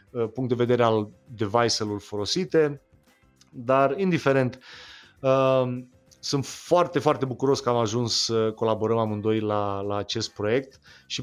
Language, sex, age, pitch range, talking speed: Romanian, male, 30-49, 115-145 Hz, 130 wpm